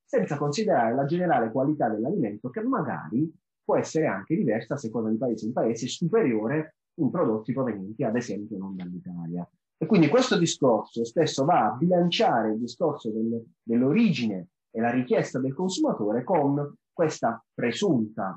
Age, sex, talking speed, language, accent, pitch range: 30-49, male, 145 wpm, Italian, native, 110-155 Hz